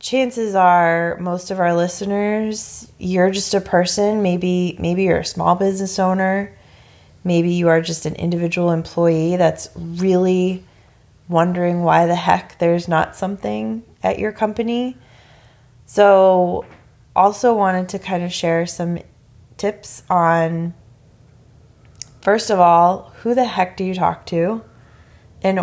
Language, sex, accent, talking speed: English, female, American, 135 wpm